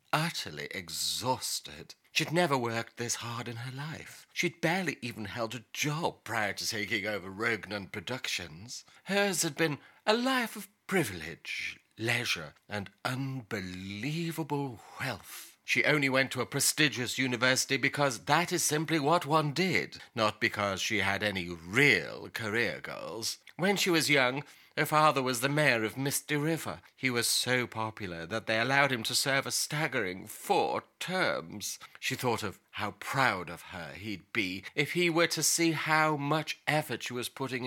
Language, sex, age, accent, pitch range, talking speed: English, male, 40-59, British, 110-150 Hz, 160 wpm